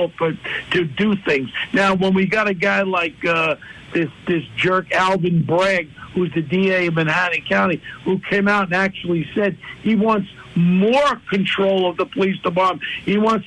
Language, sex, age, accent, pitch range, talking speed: English, male, 60-79, American, 175-215 Hz, 170 wpm